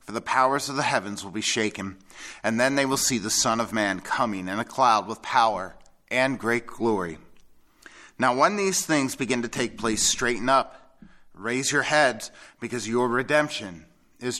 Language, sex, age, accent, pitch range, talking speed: English, male, 30-49, American, 105-140 Hz, 185 wpm